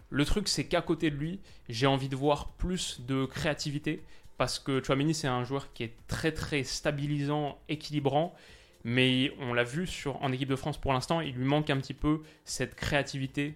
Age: 20-39